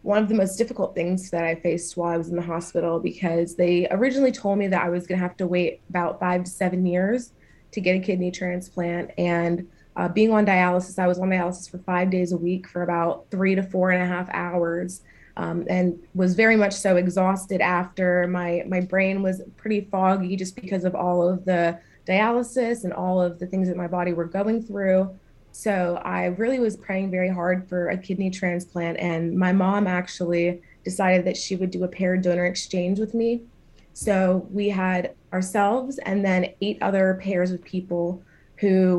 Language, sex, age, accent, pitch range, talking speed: English, female, 20-39, American, 175-195 Hz, 200 wpm